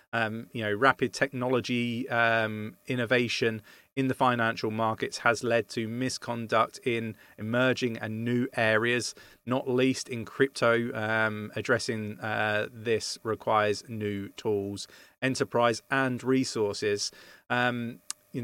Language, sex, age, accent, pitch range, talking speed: English, male, 30-49, British, 115-130 Hz, 115 wpm